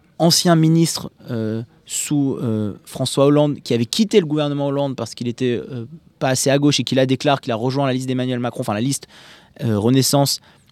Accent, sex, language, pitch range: French, male, French, 120-150 Hz